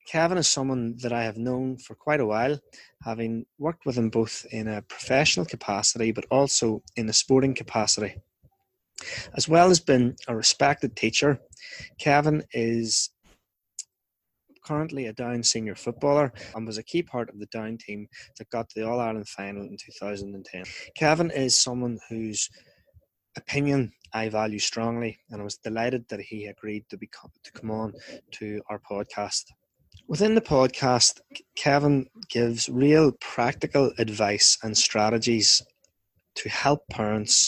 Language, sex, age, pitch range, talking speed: English, male, 20-39, 110-135 Hz, 145 wpm